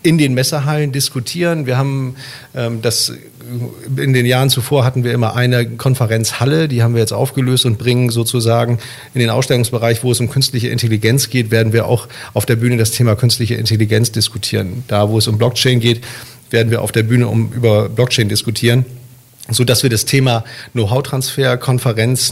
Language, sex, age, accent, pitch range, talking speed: German, male, 40-59, German, 115-130 Hz, 175 wpm